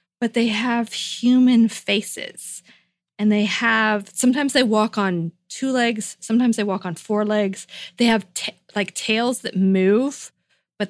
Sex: female